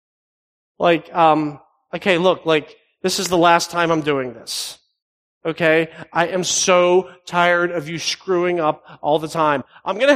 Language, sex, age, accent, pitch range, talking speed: English, male, 40-59, American, 180-290 Hz, 160 wpm